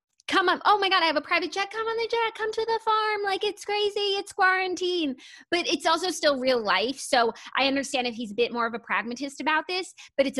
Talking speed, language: 255 wpm, English